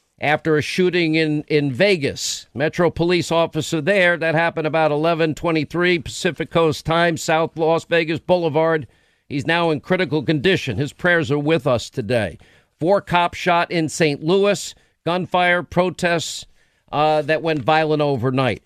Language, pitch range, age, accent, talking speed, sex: English, 145-175 Hz, 50-69, American, 145 wpm, male